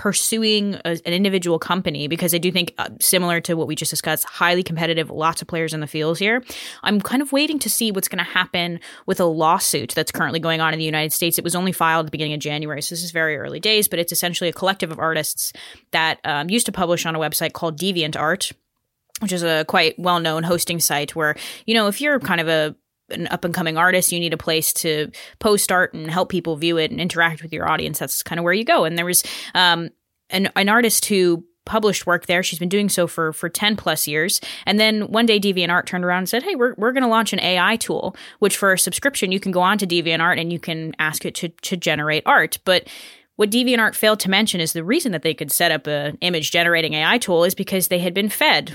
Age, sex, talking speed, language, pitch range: 20-39, female, 245 wpm, English, 165-195 Hz